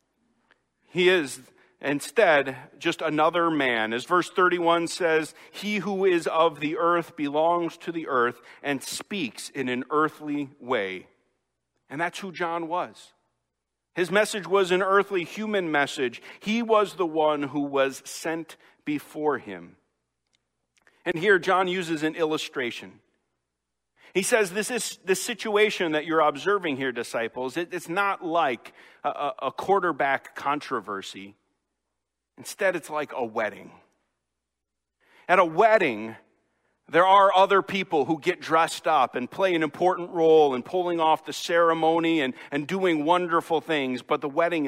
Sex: male